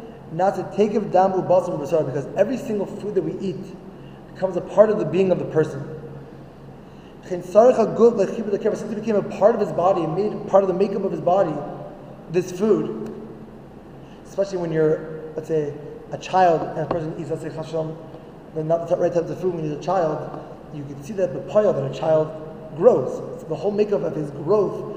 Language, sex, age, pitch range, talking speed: English, male, 20-39, 160-200 Hz, 195 wpm